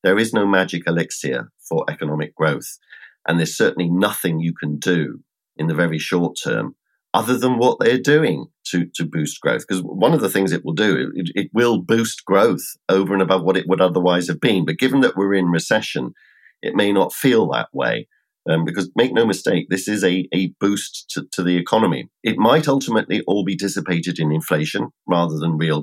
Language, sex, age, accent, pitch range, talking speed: English, male, 50-69, British, 85-100 Hz, 205 wpm